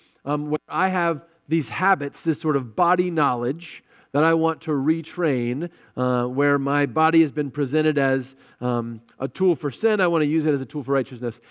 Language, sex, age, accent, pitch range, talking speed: English, male, 40-59, American, 140-180 Hz, 205 wpm